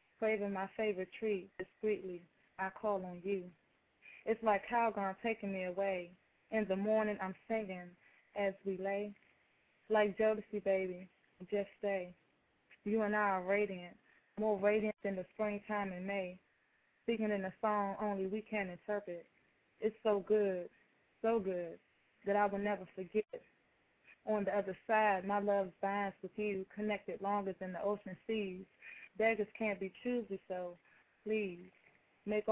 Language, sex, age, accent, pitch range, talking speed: English, female, 20-39, American, 190-210 Hz, 150 wpm